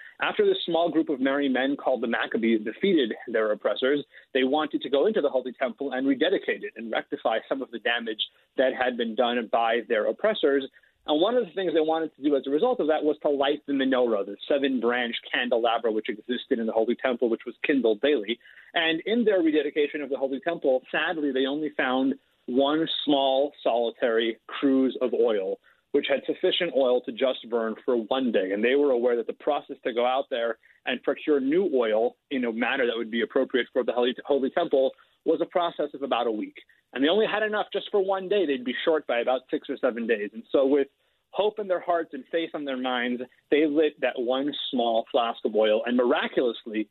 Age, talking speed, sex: 30-49, 215 wpm, male